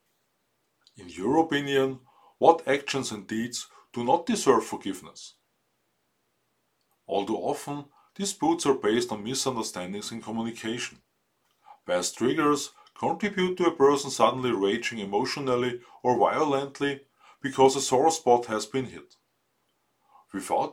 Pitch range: 115-140 Hz